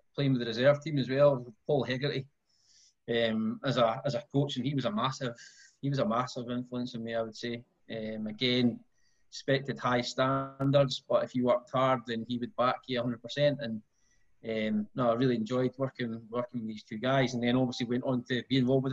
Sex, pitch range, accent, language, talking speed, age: male, 120-135 Hz, British, English, 210 wpm, 20-39